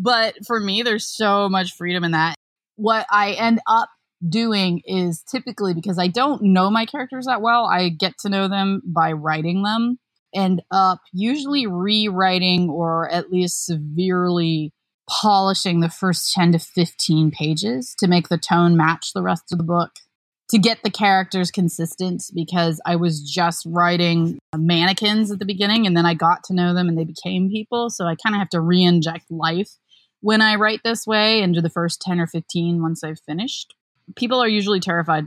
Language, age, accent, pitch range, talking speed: English, 20-39, American, 170-215 Hz, 180 wpm